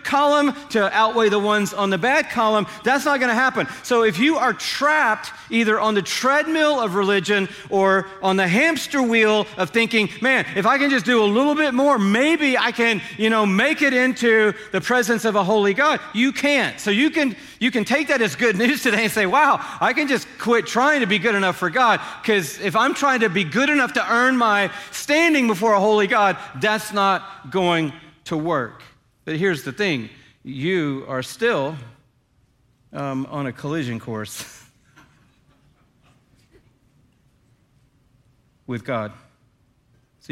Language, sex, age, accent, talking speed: English, male, 40-59, American, 175 wpm